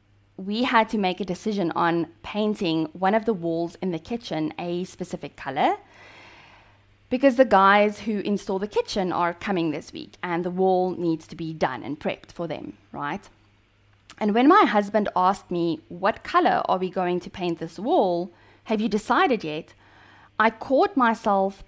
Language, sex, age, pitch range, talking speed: English, female, 20-39, 165-220 Hz, 175 wpm